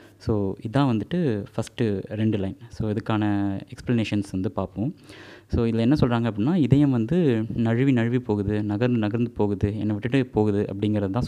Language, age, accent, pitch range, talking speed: Tamil, 20-39, native, 105-125 Hz, 155 wpm